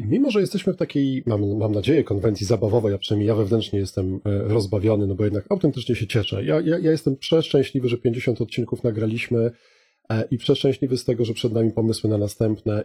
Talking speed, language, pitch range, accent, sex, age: 190 wpm, Polish, 105-135 Hz, native, male, 40-59